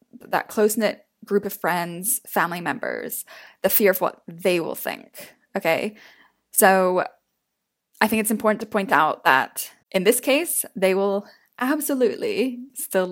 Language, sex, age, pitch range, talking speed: English, female, 10-29, 185-235 Hz, 140 wpm